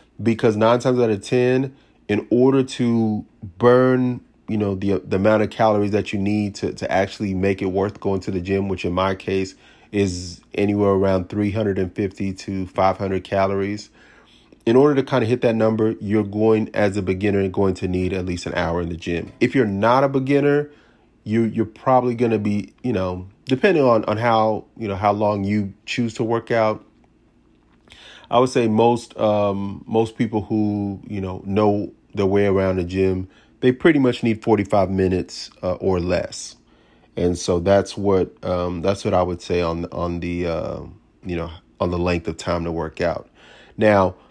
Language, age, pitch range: English, 30-49, 95-115 Hz